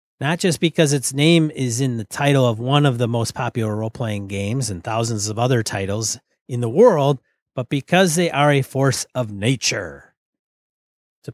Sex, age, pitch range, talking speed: male, 30-49, 120-165 Hz, 180 wpm